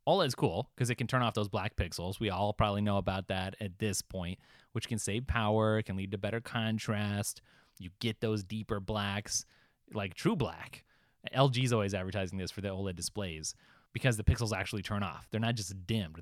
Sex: male